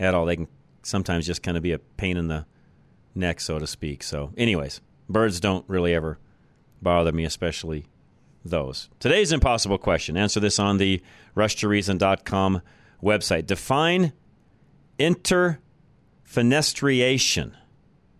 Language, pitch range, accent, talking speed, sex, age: English, 85-110 Hz, American, 125 wpm, male, 40-59